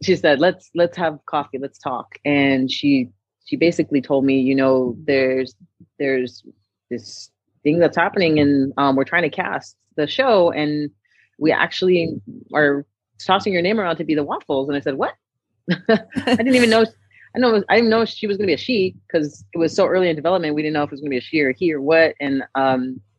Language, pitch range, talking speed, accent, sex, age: English, 130-155 Hz, 225 wpm, American, female, 30-49